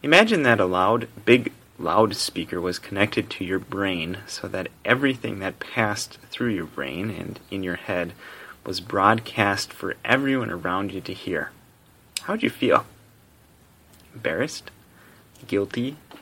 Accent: American